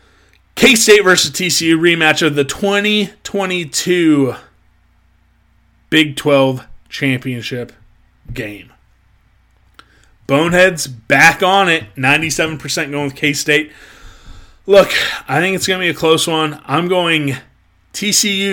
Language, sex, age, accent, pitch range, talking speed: English, male, 30-49, American, 140-185 Hz, 110 wpm